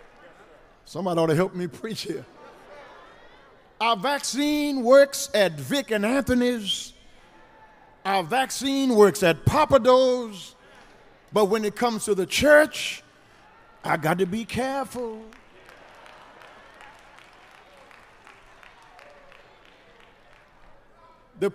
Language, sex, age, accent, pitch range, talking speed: English, male, 50-69, American, 170-270 Hz, 90 wpm